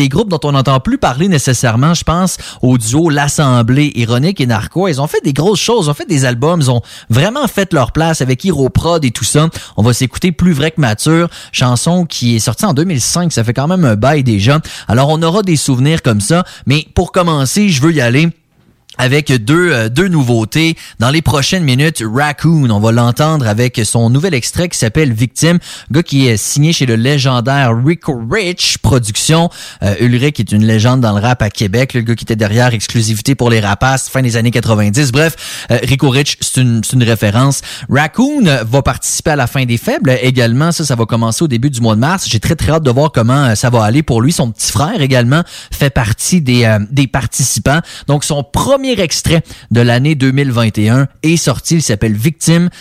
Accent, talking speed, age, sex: Canadian, 210 wpm, 30-49, male